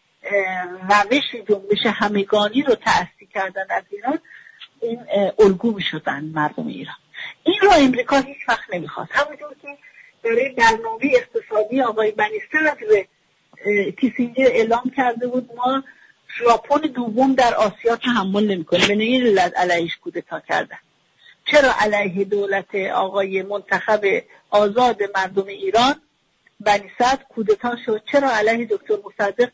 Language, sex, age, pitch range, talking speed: English, female, 50-69, 200-275 Hz, 120 wpm